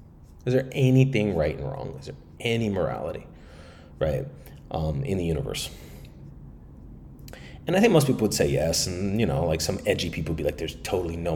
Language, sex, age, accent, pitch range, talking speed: English, male, 30-49, American, 75-100 Hz, 190 wpm